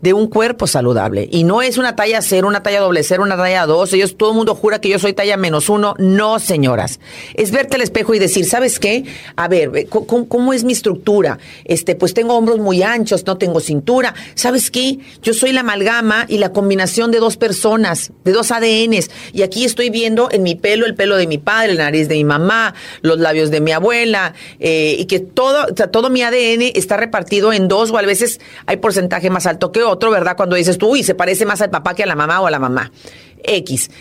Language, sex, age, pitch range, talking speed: Spanish, female, 40-59, 190-245 Hz, 235 wpm